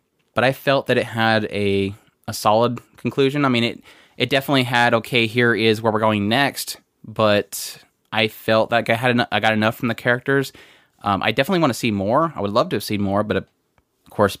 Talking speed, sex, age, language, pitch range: 220 wpm, male, 20-39, English, 105-120 Hz